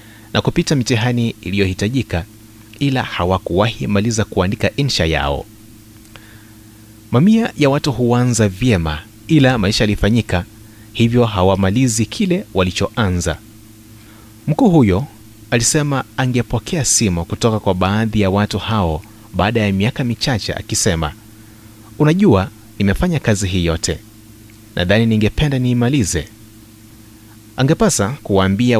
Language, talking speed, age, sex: Swahili, 100 wpm, 30-49, male